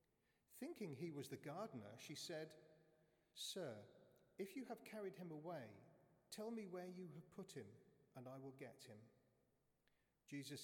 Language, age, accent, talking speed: English, 40-59, British, 150 wpm